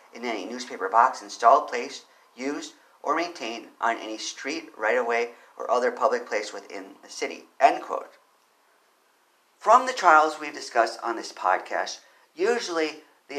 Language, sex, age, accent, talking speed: English, male, 50-69, American, 145 wpm